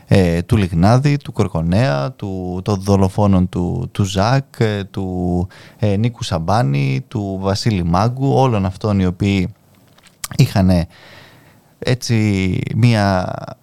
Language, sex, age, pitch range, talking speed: Greek, male, 20-39, 95-130 Hz, 105 wpm